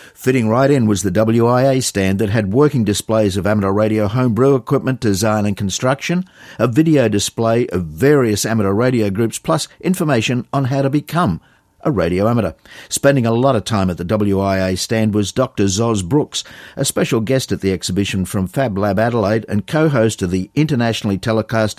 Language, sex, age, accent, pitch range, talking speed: English, male, 50-69, Australian, 100-135 Hz, 180 wpm